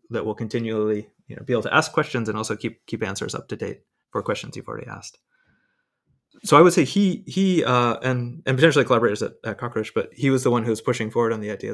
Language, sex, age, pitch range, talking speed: English, male, 20-39, 110-135 Hz, 250 wpm